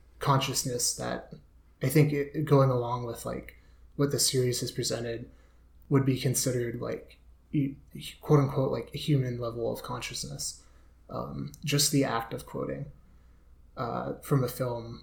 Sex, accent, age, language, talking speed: male, American, 20-39, English, 140 wpm